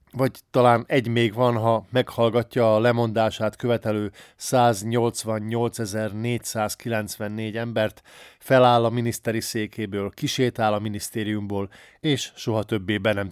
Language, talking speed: Hungarian, 110 wpm